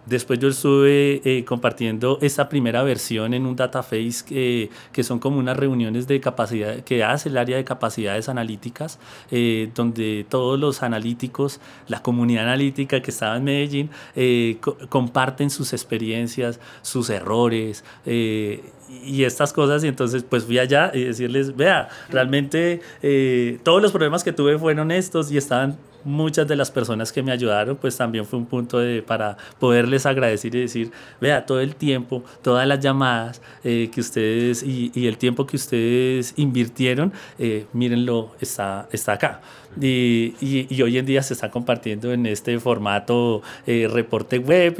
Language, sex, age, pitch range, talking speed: Spanish, male, 30-49, 120-140 Hz, 165 wpm